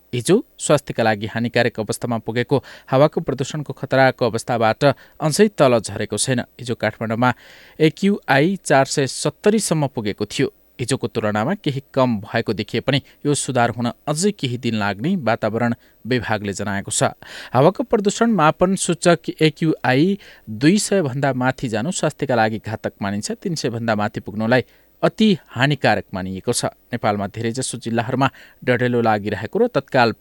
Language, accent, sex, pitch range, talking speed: English, Indian, male, 115-155 Hz, 120 wpm